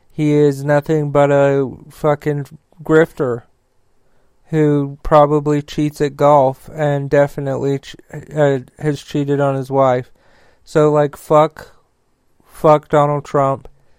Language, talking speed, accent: English, 115 wpm, American